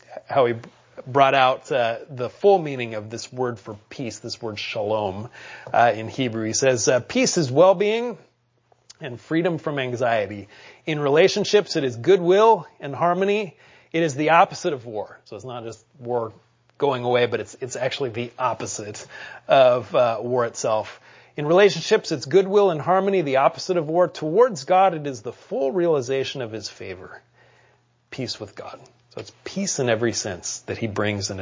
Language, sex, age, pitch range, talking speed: English, male, 30-49, 115-165 Hz, 175 wpm